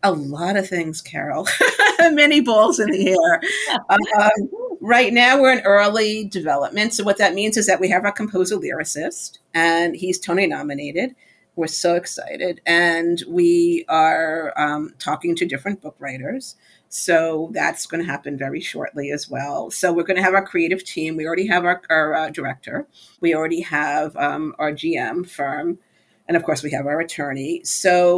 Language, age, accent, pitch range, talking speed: English, 50-69, American, 160-205 Hz, 175 wpm